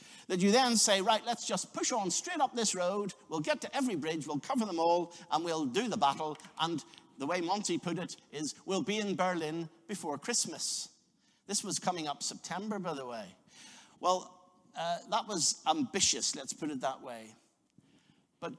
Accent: British